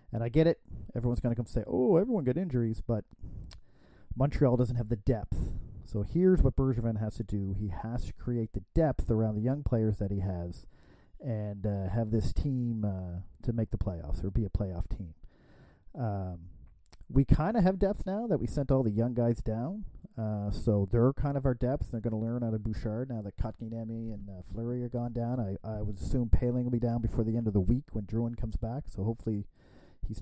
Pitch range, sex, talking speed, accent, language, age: 100-125 Hz, male, 225 wpm, American, English, 40-59